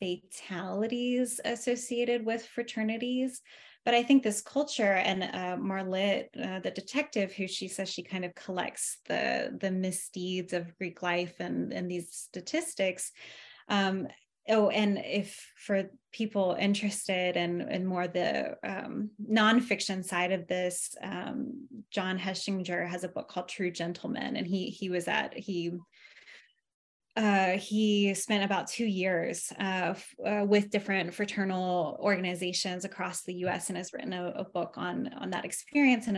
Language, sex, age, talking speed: English, female, 20-39, 150 wpm